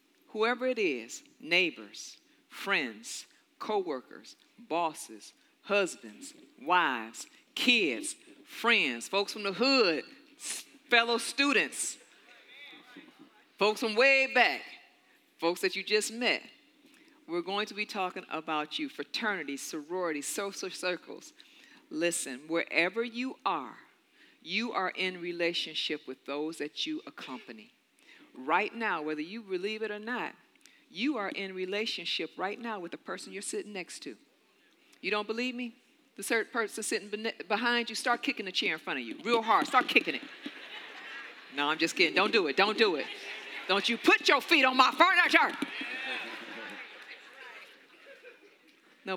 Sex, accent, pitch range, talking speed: female, American, 190-300 Hz, 140 wpm